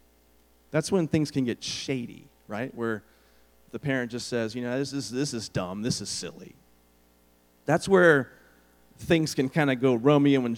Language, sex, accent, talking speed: English, male, American, 175 wpm